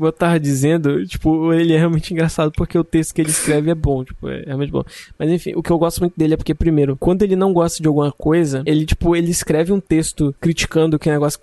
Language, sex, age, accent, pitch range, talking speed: Portuguese, male, 20-39, Brazilian, 145-165 Hz, 265 wpm